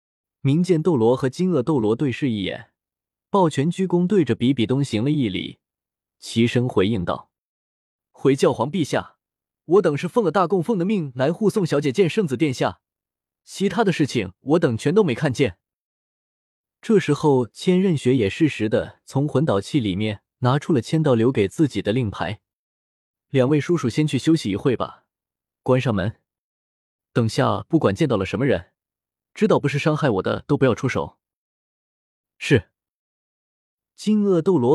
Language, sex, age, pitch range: Chinese, male, 20-39, 115-170 Hz